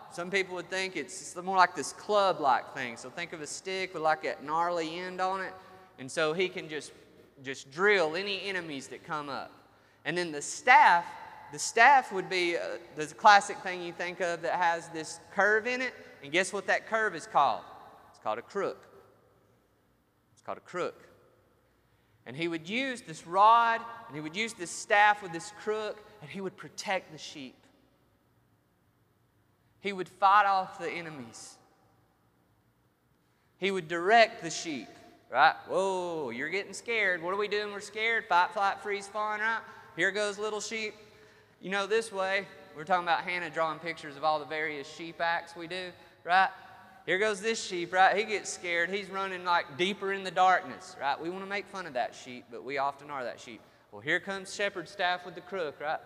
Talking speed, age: 190 wpm, 30-49